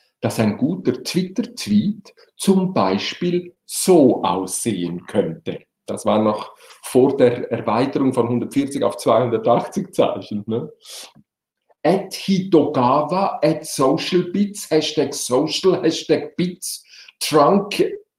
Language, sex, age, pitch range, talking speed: German, male, 50-69, 125-190 Hz, 95 wpm